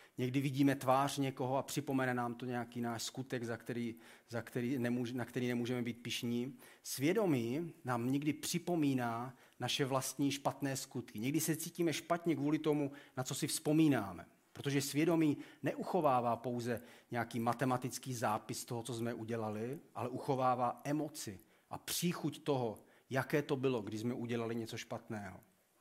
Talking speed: 135 wpm